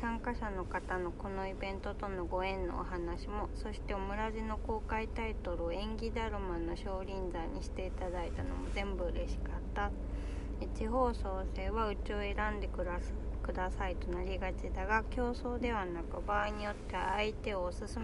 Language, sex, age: Japanese, female, 20-39